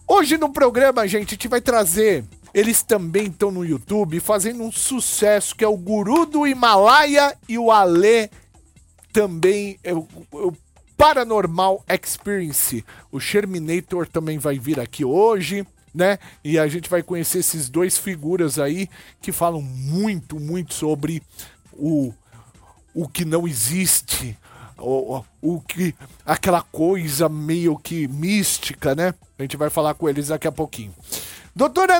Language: Portuguese